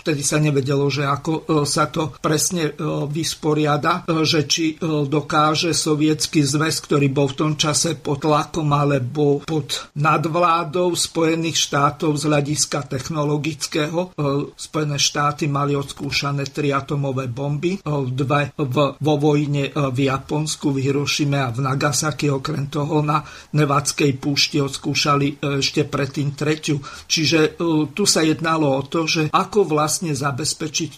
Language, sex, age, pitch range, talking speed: Slovak, male, 50-69, 145-170 Hz, 125 wpm